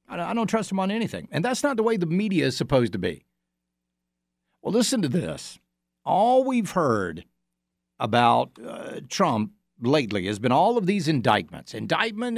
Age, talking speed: 50-69, 170 wpm